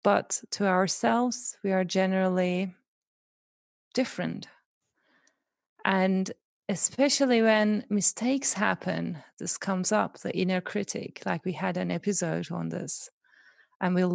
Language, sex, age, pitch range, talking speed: English, female, 30-49, 180-210 Hz, 115 wpm